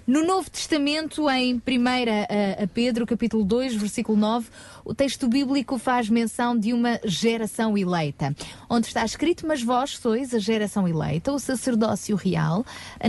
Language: Portuguese